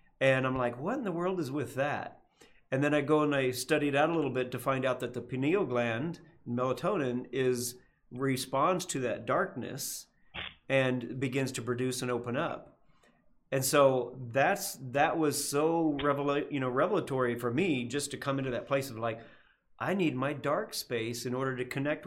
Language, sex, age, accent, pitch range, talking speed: English, male, 40-59, American, 125-145 Hz, 195 wpm